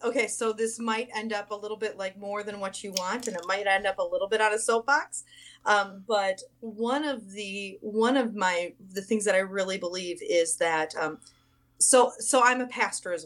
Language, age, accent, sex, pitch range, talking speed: English, 30-49, American, female, 185-235 Hz, 220 wpm